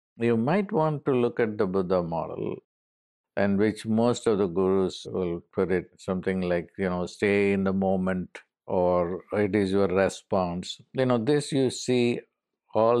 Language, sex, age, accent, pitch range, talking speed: English, male, 50-69, Indian, 95-120 Hz, 170 wpm